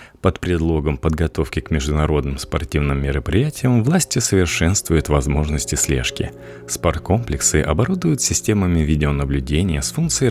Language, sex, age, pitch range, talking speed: Russian, male, 30-49, 75-105 Hz, 100 wpm